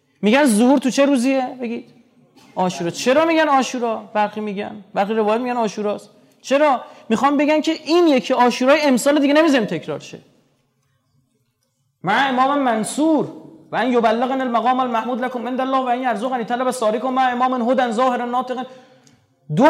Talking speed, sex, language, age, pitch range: 155 wpm, male, Persian, 30-49, 205-275 Hz